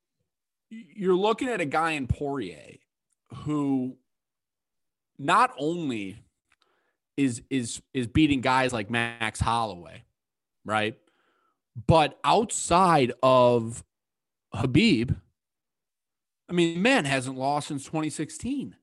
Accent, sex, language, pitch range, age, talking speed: American, male, English, 115-145 Hz, 30-49, 95 wpm